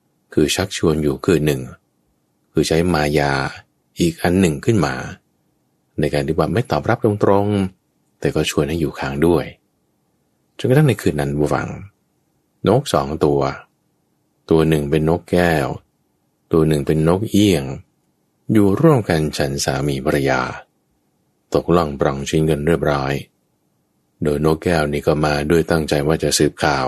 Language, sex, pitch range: Thai, male, 75-105 Hz